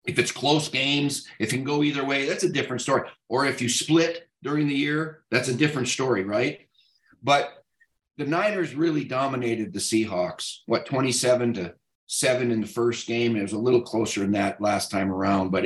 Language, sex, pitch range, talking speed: English, male, 110-140 Hz, 200 wpm